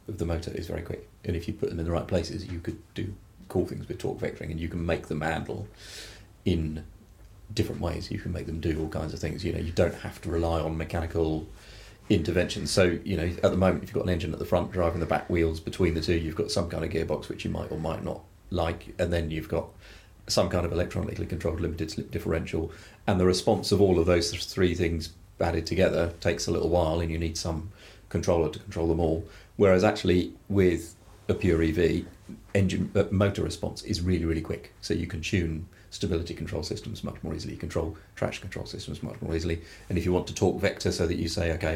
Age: 30-49